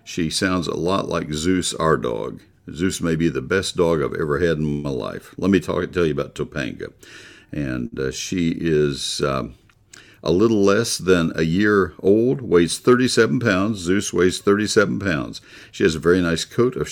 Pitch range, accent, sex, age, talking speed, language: 75-100 Hz, American, male, 50-69, 185 wpm, English